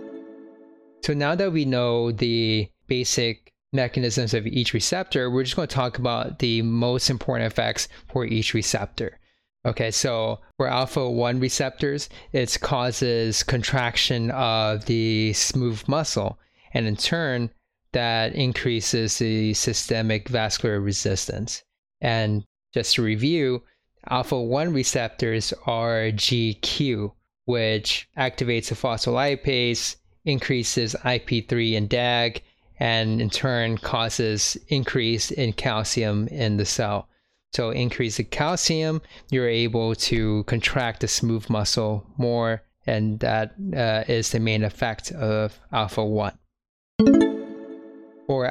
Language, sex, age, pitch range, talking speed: English, male, 20-39, 110-130 Hz, 115 wpm